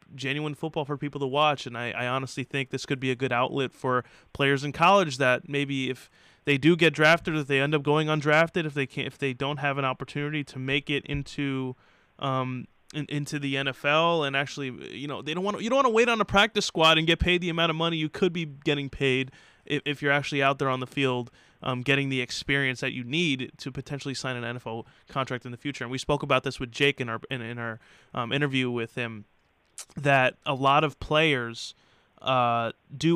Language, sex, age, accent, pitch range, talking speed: English, male, 20-39, American, 130-150 Hz, 235 wpm